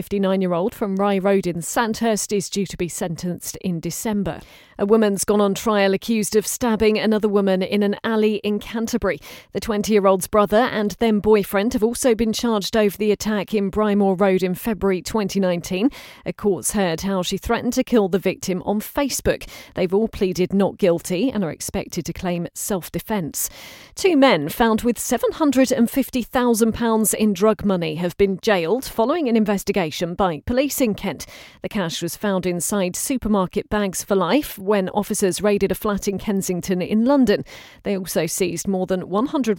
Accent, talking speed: British, 170 wpm